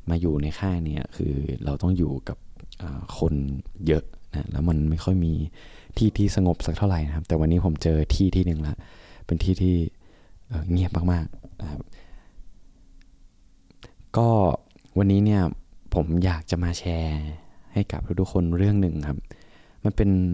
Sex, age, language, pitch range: male, 20-39, Thai, 80-95 Hz